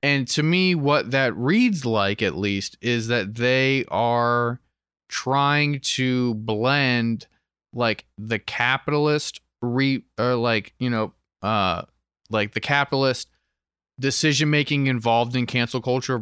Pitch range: 105-135 Hz